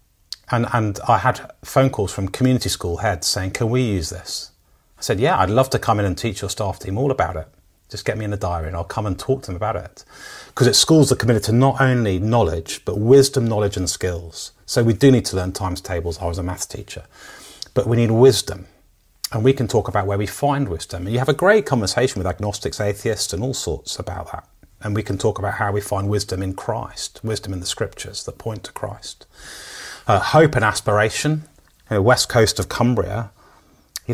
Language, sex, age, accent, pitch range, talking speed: English, male, 30-49, British, 90-120 Hz, 230 wpm